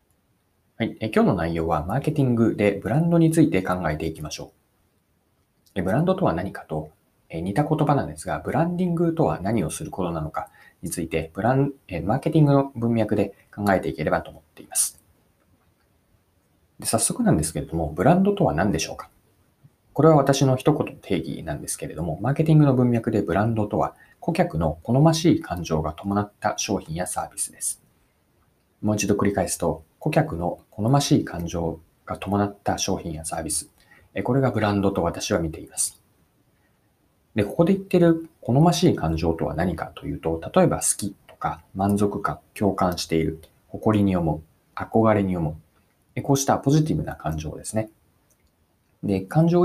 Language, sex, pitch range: Japanese, male, 85-140 Hz